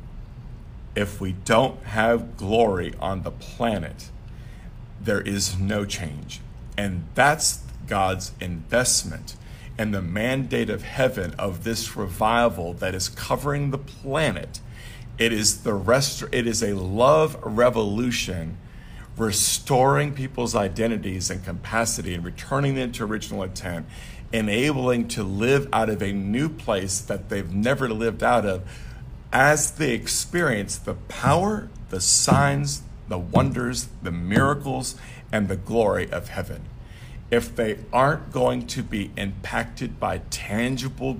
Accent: American